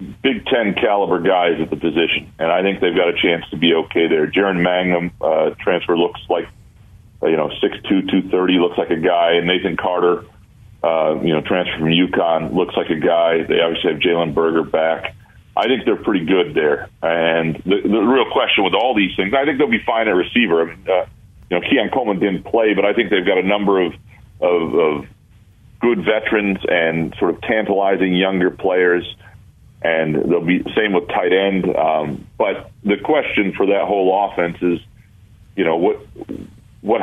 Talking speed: 200 wpm